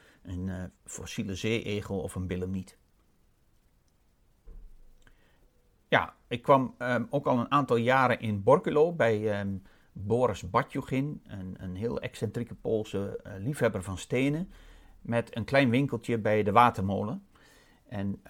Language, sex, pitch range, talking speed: Dutch, male, 100-120 Hz, 125 wpm